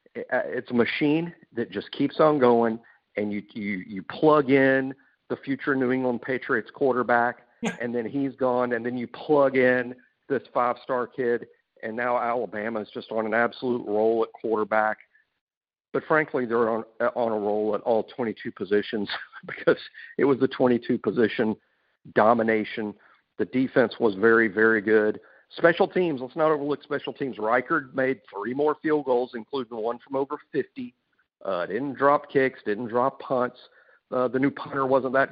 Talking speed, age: 170 wpm, 50-69